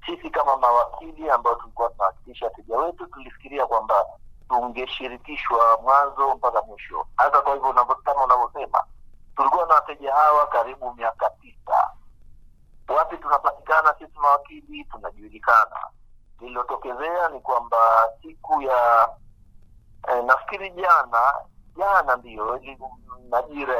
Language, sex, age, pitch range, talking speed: Swahili, male, 50-69, 115-170 Hz, 110 wpm